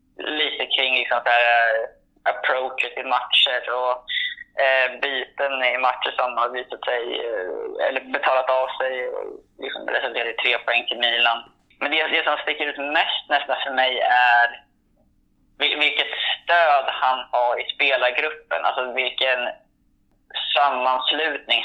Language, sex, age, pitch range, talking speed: Swedish, male, 20-39, 125-155 Hz, 135 wpm